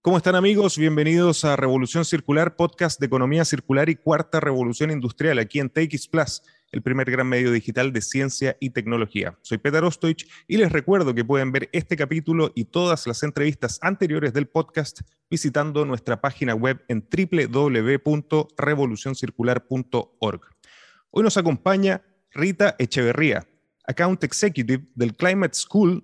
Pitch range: 130-170 Hz